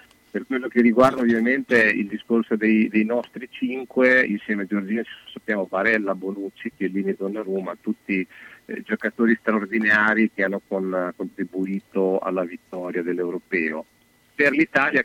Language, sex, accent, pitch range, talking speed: Italian, male, native, 95-115 Hz, 130 wpm